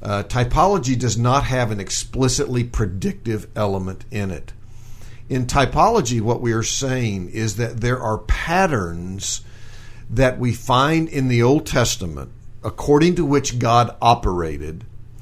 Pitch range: 110-130 Hz